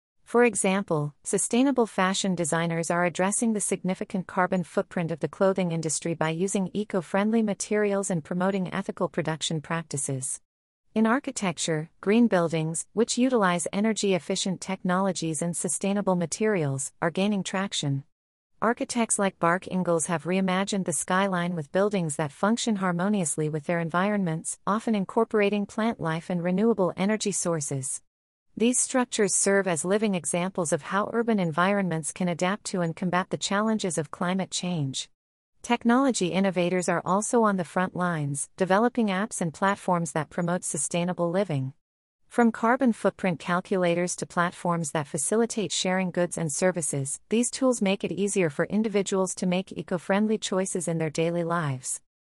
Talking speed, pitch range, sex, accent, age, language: 145 wpm, 170-205 Hz, female, American, 40-59, English